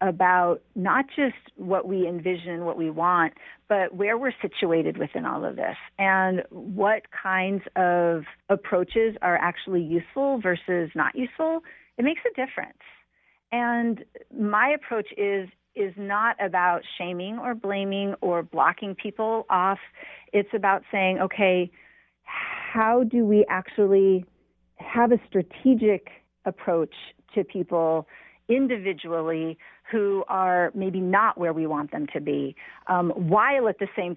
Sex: female